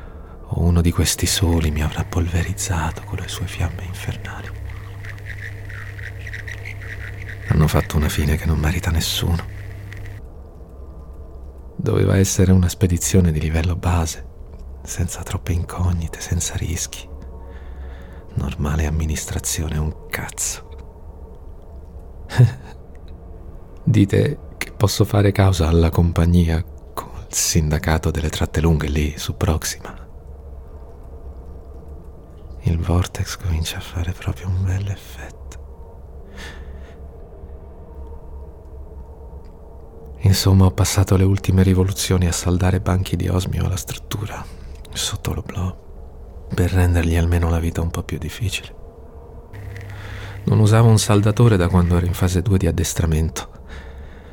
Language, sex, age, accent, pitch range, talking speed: Italian, male, 40-59, native, 75-95 Hz, 105 wpm